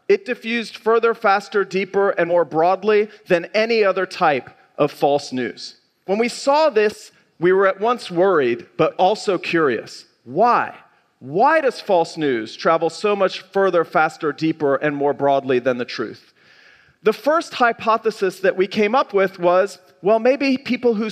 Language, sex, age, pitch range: Japanese, male, 40-59, 165-225 Hz